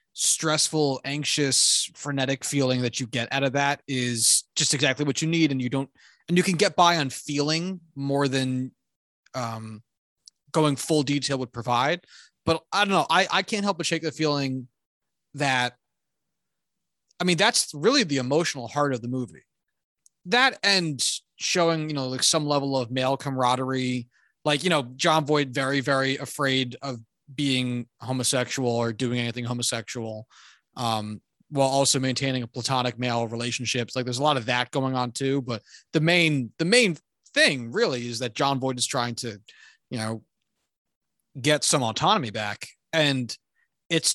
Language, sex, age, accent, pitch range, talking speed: English, male, 20-39, American, 125-160 Hz, 165 wpm